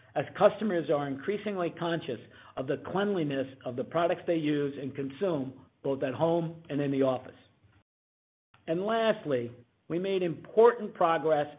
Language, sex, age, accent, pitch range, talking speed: English, male, 50-69, American, 135-170 Hz, 145 wpm